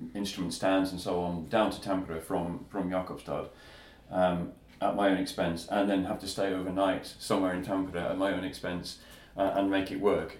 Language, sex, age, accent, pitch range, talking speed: Finnish, male, 30-49, British, 90-105 Hz, 195 wpm